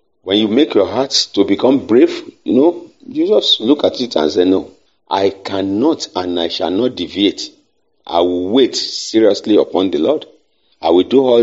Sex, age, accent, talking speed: male, 50-69, Nigerian, 190 wpm